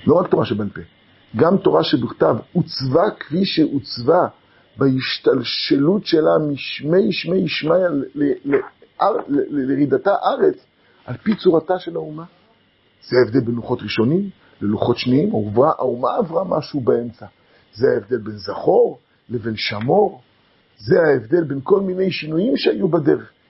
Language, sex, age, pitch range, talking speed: Hebrew, male, 50-69, 130-180 Hz, 125 wpm